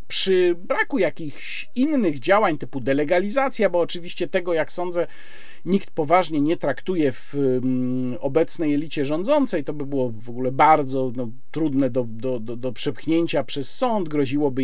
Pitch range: 140-210 Hz